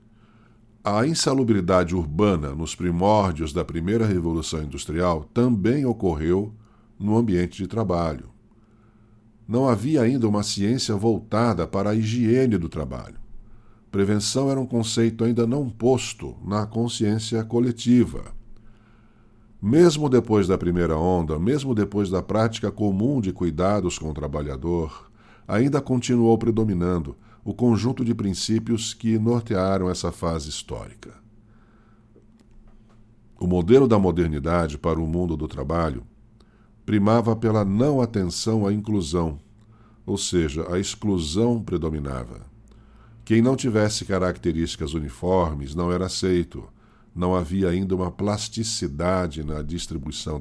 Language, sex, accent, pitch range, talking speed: Portuguese, male, Brazilian, 90-110 Hz, 115 wpm